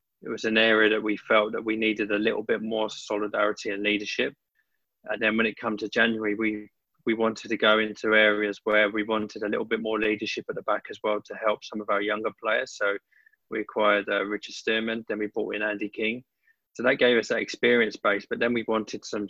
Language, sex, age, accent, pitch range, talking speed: English, male, 20-39, British, 105-115 Hz, 235 wpm